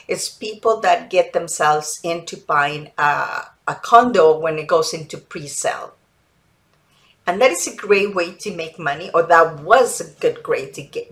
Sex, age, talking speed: female, 50-69, 175 wpm